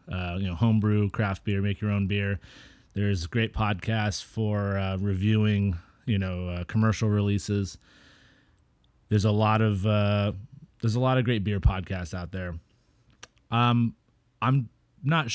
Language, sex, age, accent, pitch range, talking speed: English, male, 30-49, American, 100-110 Hz, 150 wpm